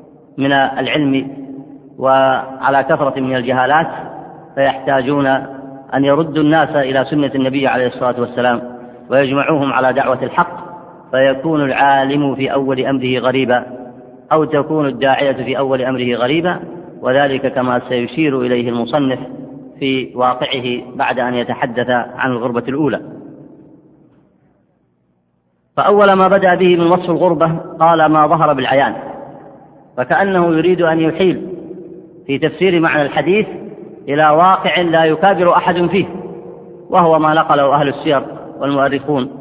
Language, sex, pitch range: Arabic, female, 130-155 Hz